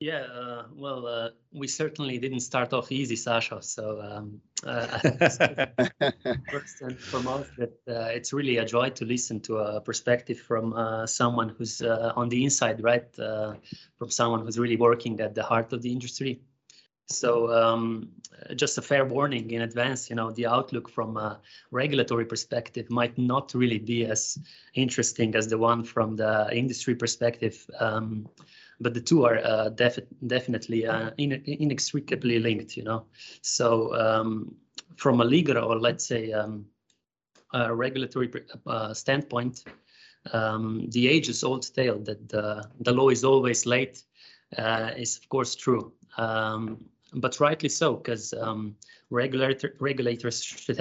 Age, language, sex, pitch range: 30-49, English, male, 110-125 Hz